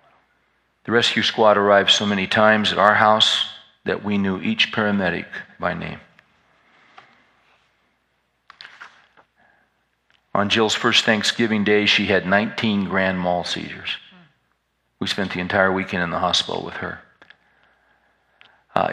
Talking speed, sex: 125 wpm, male